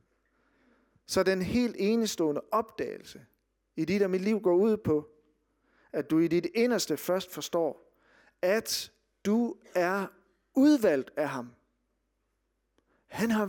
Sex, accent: male, native